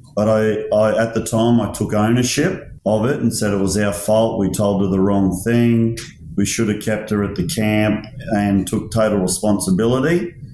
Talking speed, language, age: 190 wpm, English, 40-59